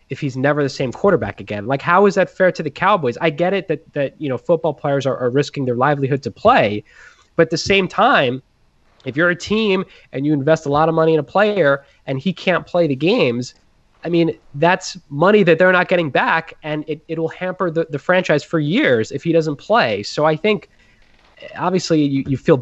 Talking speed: 225 wpm